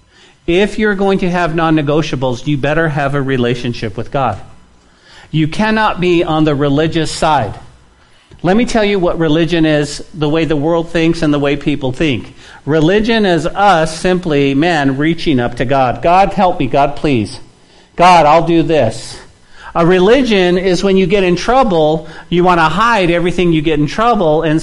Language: English